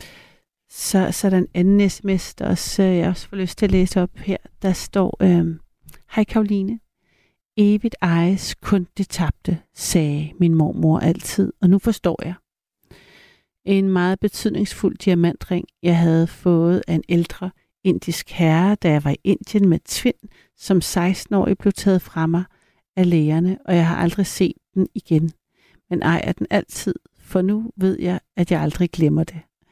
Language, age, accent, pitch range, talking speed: Danish, 60-79, native, 165-195 Hz, 165 wpm